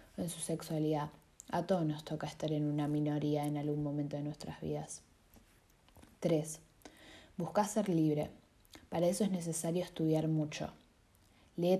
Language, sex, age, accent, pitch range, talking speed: Spanish, female, 20-39, Argentinian, 150-180 Hz, 140 wpm